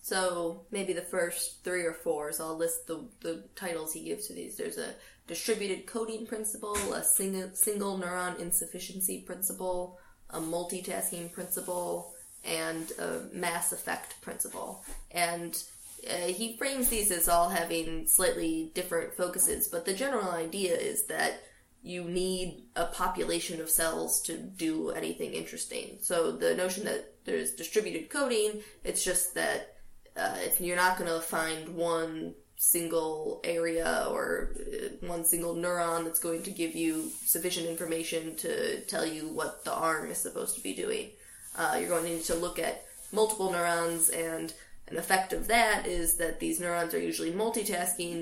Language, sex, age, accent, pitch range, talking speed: English, female, 20-39, American, 165-190 Hz, 160 wpm